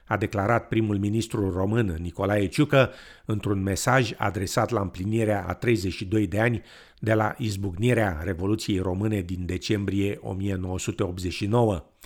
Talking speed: 120 wpm